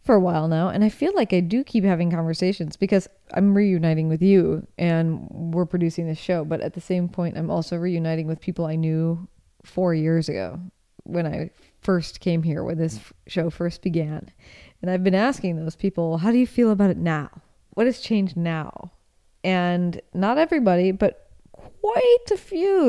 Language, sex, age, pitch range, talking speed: English, female, 20-39, 165-200 Hz, 190 wpm